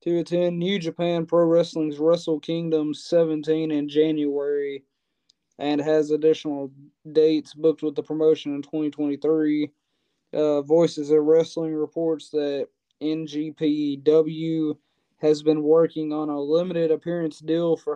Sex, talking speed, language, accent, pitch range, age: male, 125 wpm, English, American, 145-160 Hz, 20-39